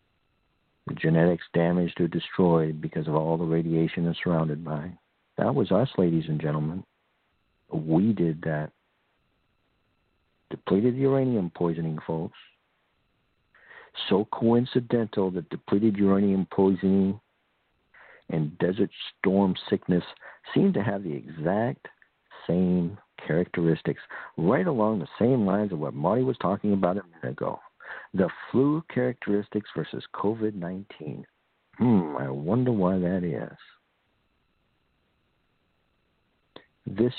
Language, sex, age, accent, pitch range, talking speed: English, male, 60-79, American, 80-100 Hz, 110 wpm